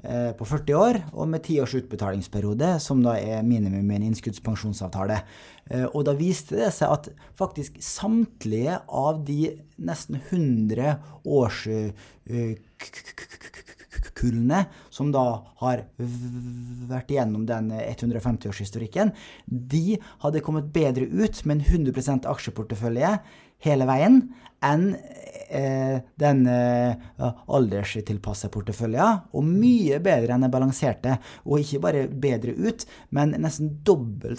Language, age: English, 30-49